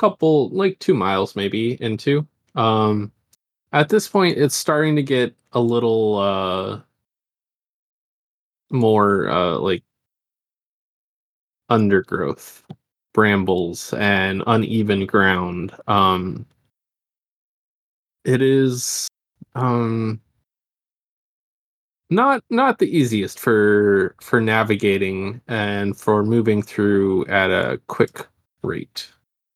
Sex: male